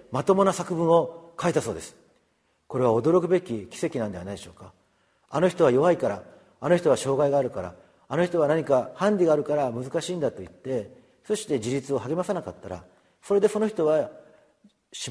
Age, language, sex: 40-59, Japanese, male